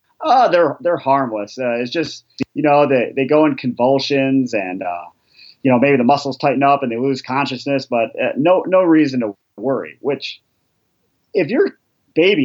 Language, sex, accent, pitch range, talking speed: English, male, American, 125-165 Hz, 185 wpm